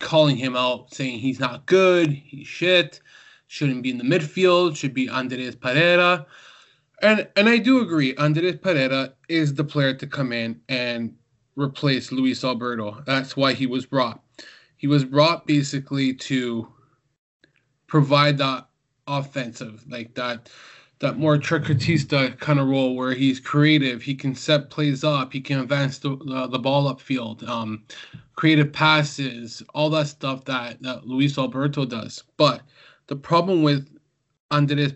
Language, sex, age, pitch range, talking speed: English, male, 20-39, 130-150 Hz, 150 wpm